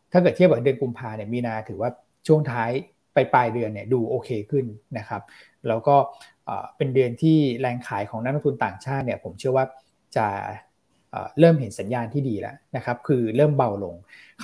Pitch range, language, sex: 120-150 Hz, Thai, male